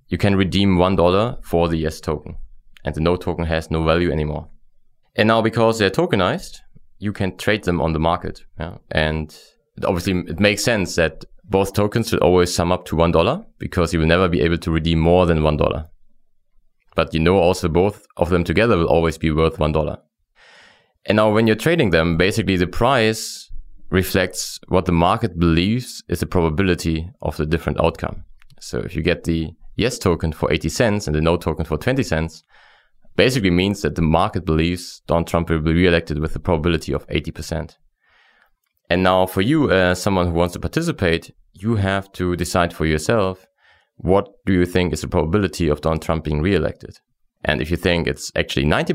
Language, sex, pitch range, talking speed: English, male, 80-95 Hz, 195 wpm